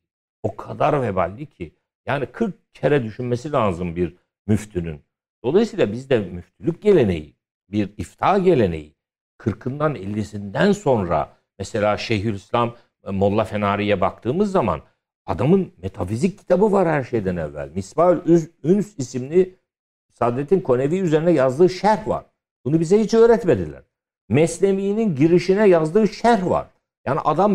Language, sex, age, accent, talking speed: Turkish, male, 60-79, native, 120 wpm